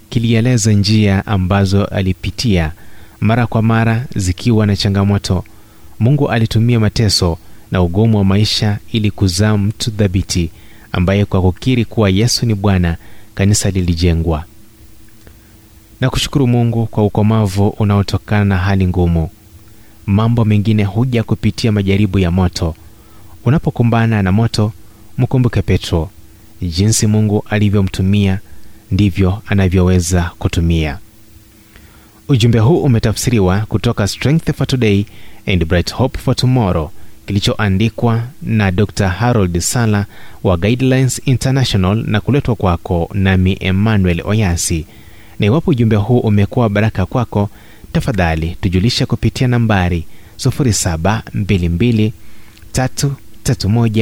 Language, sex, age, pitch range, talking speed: Swahili, male, 30-49, 95-115 Hz, 105 wpm